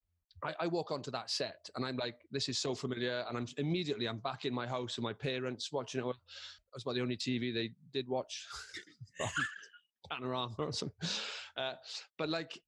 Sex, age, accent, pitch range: male, 30-49, British, 115-155 Hz